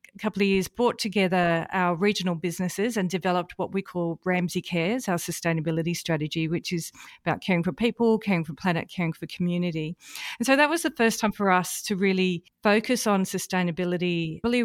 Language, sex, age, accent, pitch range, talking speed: English, female, 40-59, Australian, 170-210 Hz, 190 wpm